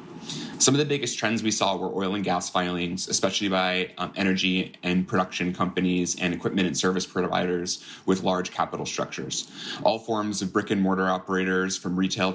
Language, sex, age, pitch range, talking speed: English, male, 20-39, 90-95 Hz, 180 wpm